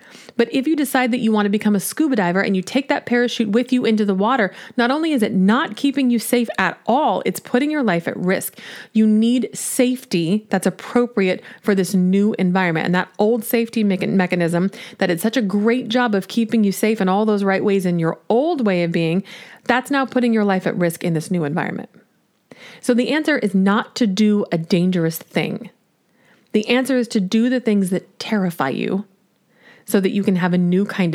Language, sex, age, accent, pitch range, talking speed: English, female, 30-49, American, 185-235 Hz, 215 wpm